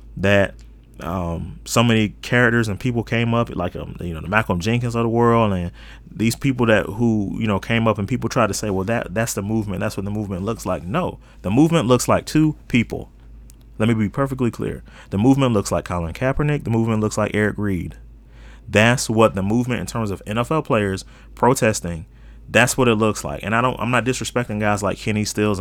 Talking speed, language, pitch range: 220 wpm, English, 95-120 Hz